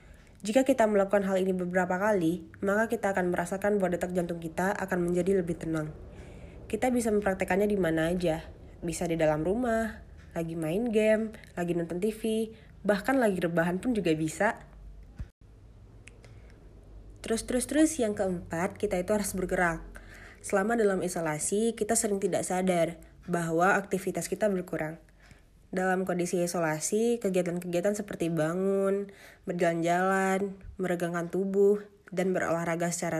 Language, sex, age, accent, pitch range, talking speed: Indonesian, female, 20-39, native, 165-210 Hz, 130 wpm